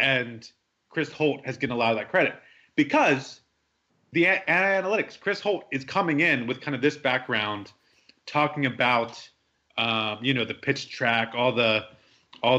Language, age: English, 30-49